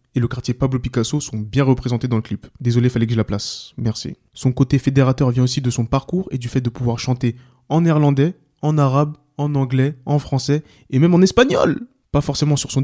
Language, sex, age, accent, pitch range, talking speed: French, male, 20-39, French, 120-150 Hz, 225 wpm